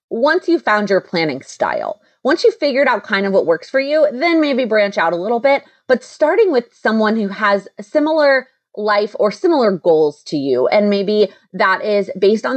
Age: 30-49